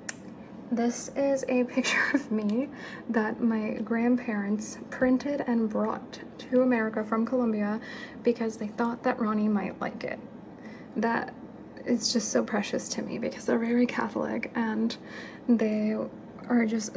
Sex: female